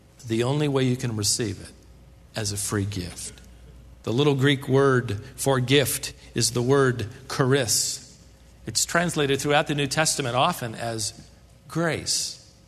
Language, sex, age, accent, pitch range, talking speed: English, male, 50-69, American, 105-145 Hz, 140 wpm